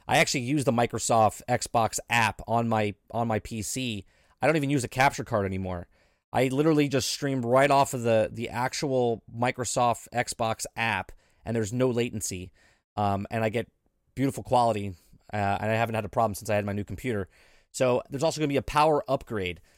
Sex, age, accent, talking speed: male, 20-39, American, 195 wpm